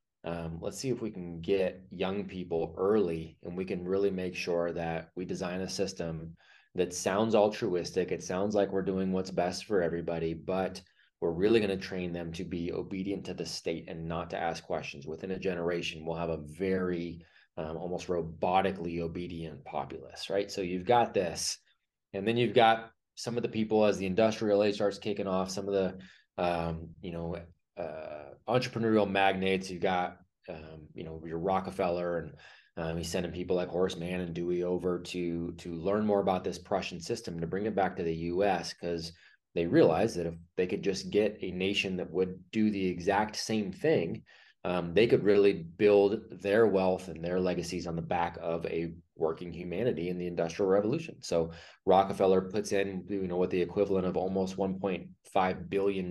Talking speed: 190 wpm